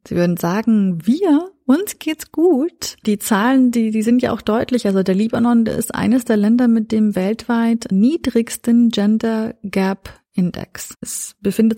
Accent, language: German, German